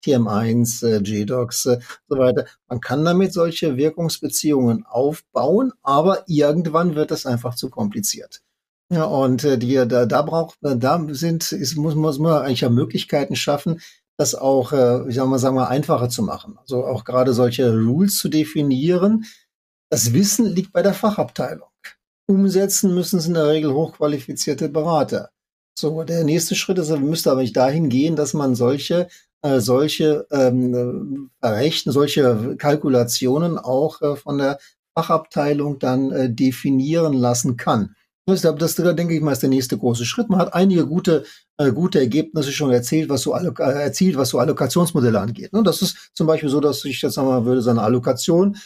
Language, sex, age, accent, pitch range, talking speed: German, male, 50-69, German, 130-165 Hz, 175 wpm